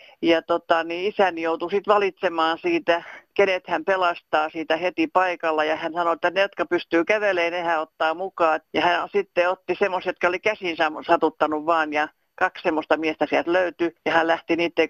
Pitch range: 160-180 Hz